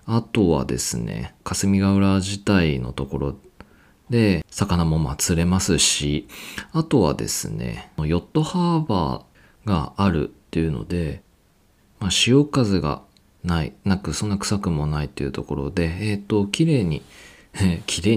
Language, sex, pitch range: Japanese, male, 80-110 Hz